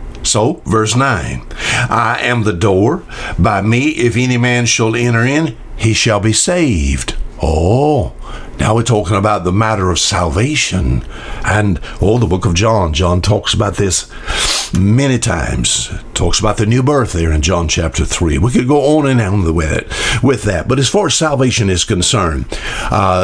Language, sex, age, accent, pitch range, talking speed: English, male, 60-79, American, 95-130 Hz, 175 wpm